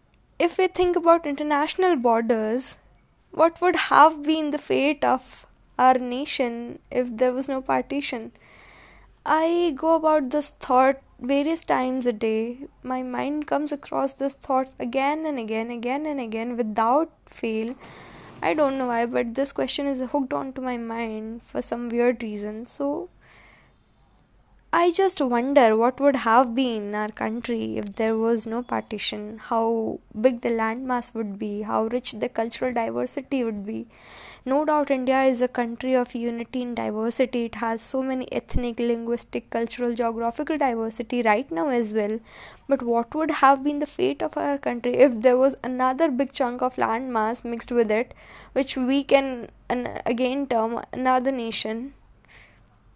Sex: female